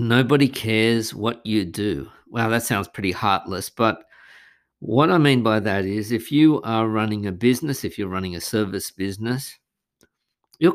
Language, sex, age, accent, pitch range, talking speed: English, male, 50-69, Australian, 100-135 Hz, 165 wpm